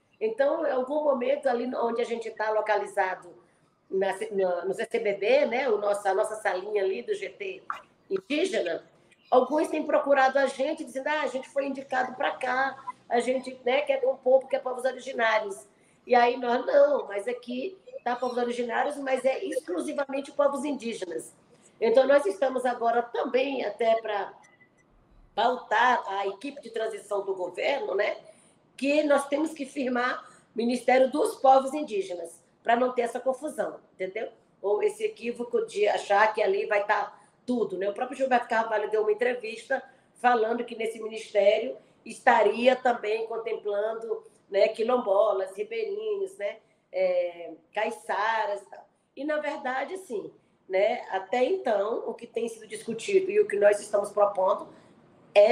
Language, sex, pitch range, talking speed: Portuguese, female, 210-280 Hz, 155 wpm